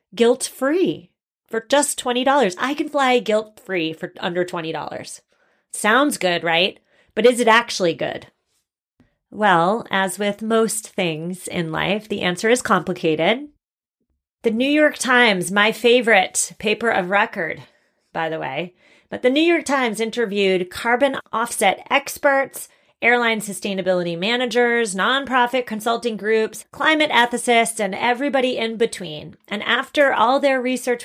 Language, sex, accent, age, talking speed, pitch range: English, female, American, 30-49, 130 wpm, 200-260 Hz